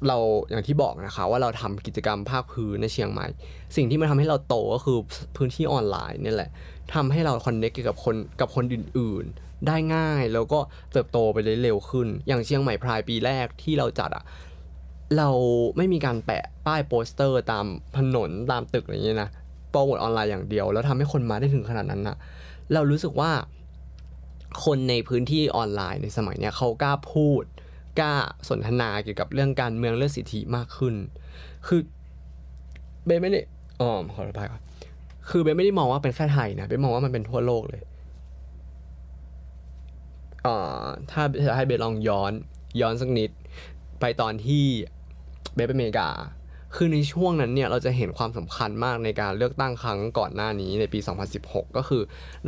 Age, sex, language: 20-39, male, Thai